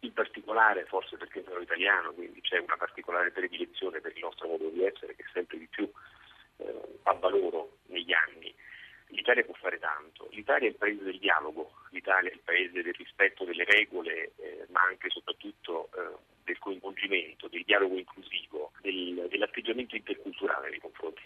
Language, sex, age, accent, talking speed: Italian, male, 40-59, native, 170 wpm